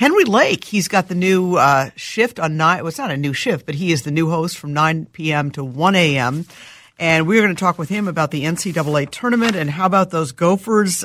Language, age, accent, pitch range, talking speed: English, 50-69, American, 155-200 Hz, 245 wpm